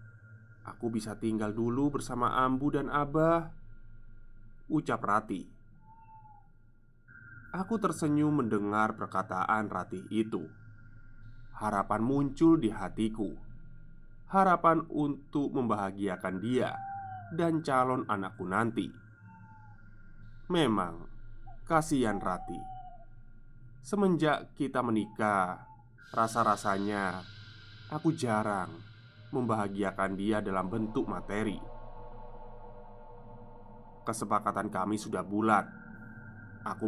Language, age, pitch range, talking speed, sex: Indonesian, 20-39, 105-130 Hz, 75 wpm, male